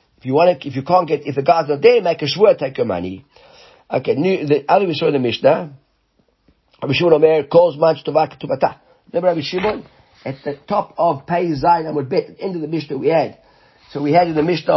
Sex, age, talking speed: male, 50-69, 235 wpm